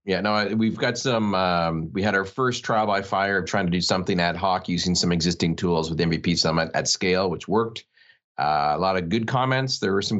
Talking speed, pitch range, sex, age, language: 235 wpm, 90-110 Hz, male, 30-49, English